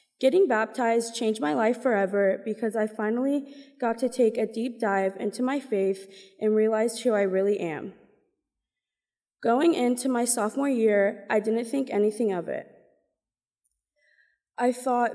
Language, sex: English, female